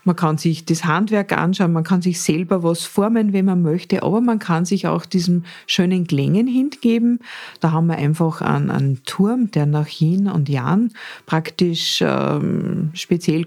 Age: 50-69